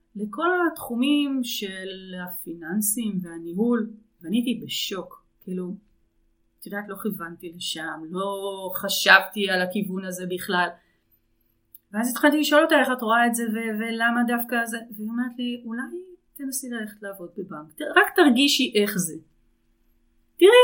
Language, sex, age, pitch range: Hebrew, female, 30-49, 180-240 Hz